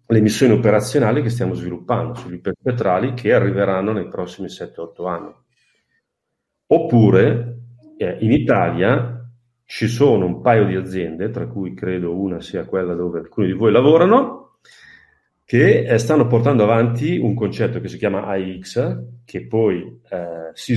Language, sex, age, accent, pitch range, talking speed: Italian, male, 40-59, native, 90-120 Hz, 145 wpm